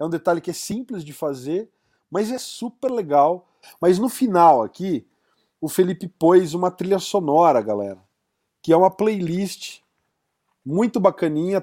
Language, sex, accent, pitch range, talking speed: Portuguese, male, Brazilian, 165-210 Hz, 150 wpm